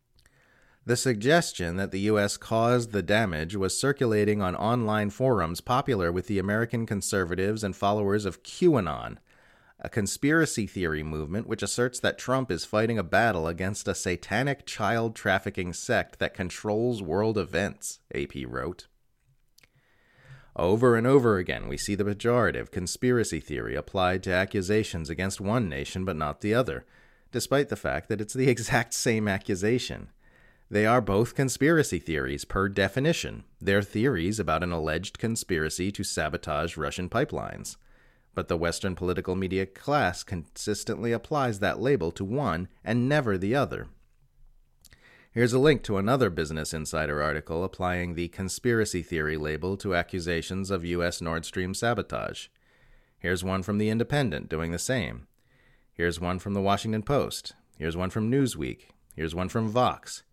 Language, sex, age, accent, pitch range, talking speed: English, male, 30-49, American, 90-115 Hz, 150 wpm